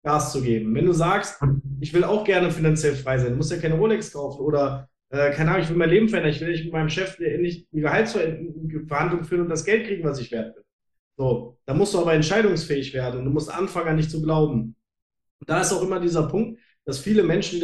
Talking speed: 250 wpm